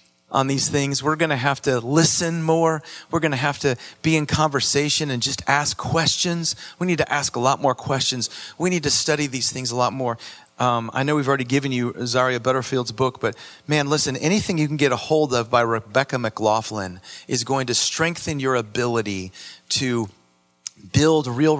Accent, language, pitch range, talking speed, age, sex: American, English, 110-140 Hz, 195 wpm, 40-59, male